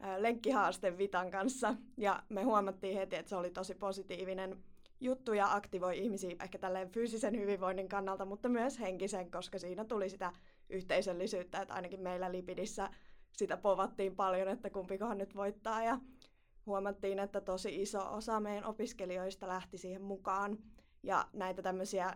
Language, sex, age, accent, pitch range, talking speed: Finnish, female, 20-39, native, 190-215 Hz, 145 wpm